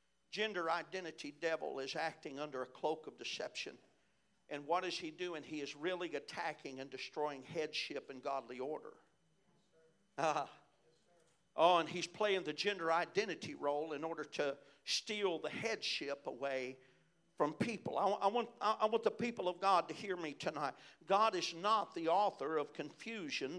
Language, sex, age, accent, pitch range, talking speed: English, male, 50-69, American, 170-210 Hz, 160 wpm